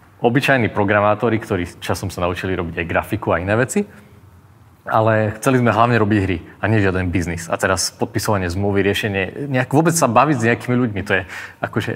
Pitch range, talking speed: 95-115 Hz, 180 wpm